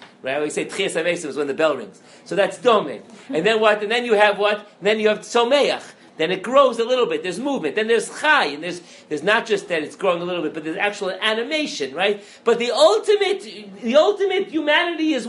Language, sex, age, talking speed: English, male, 50-69, 230 wpm